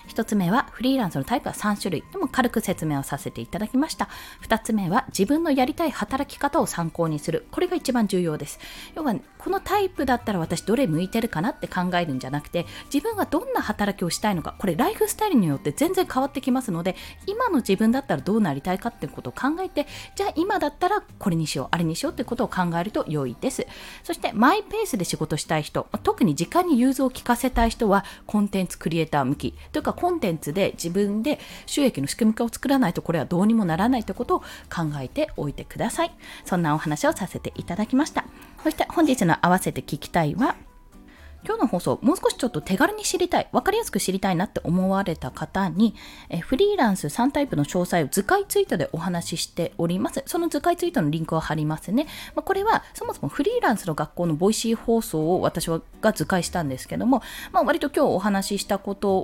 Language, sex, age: Japanese, female, 20-39